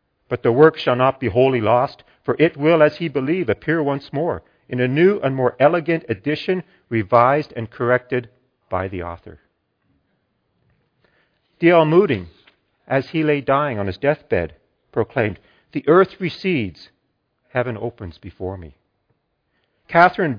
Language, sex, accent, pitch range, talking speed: English, male, American, 100-145 Hz, 140 wpm